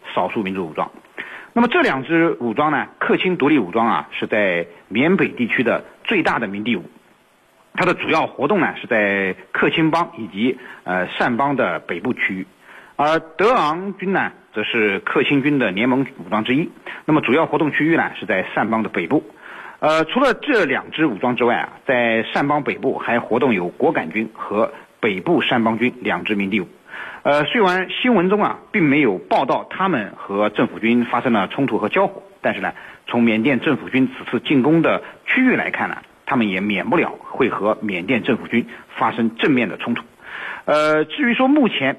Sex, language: male, Chinese